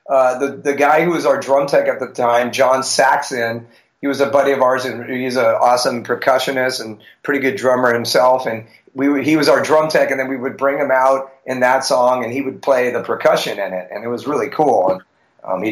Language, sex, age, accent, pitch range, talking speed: English, male, 30-49, American, 115-145 Hz, 245 wpm